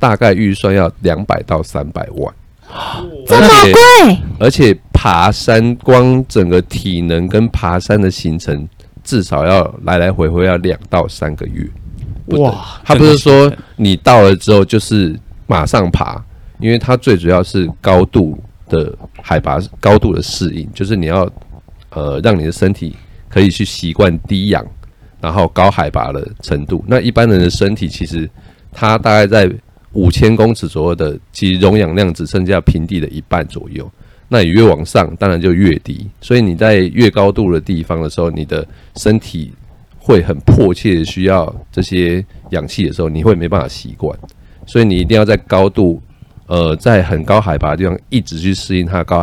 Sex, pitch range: male, 85-105 Hz